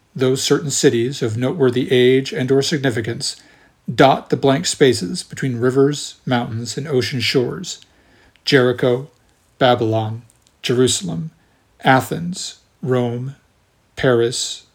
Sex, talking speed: male, 100 wpm